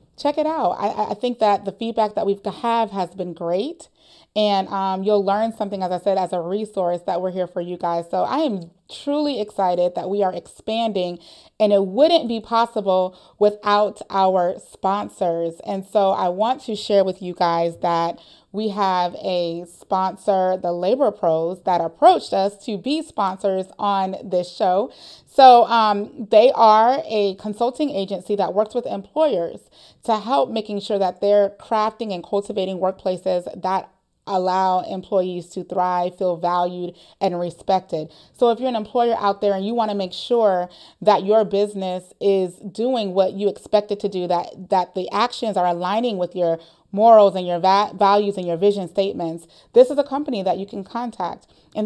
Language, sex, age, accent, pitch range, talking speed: English, female, 30-49, American, 185-220 Hz, 180 wpm